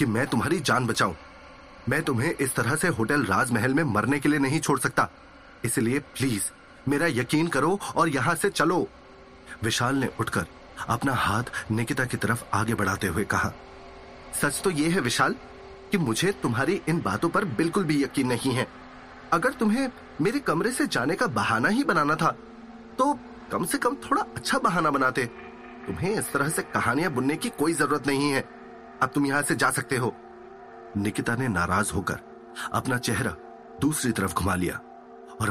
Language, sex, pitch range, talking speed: Hindi, male, 110-165 Hz, 175 wpm